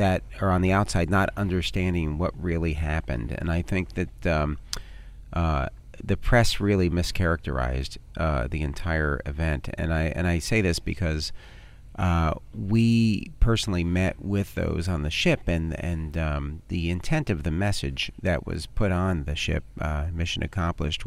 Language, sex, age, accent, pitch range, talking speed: English, male, 40-59, American, 80-95 Hz, 160 wpm